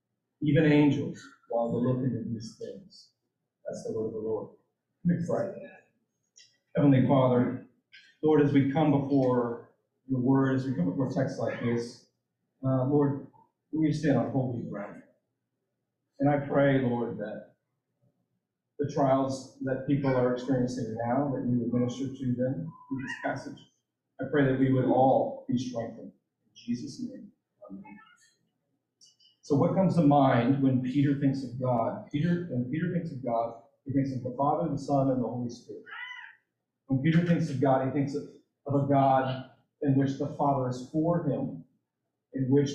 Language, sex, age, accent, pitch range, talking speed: English, male, 40-59, American, 130-160 Hz, 165 wpm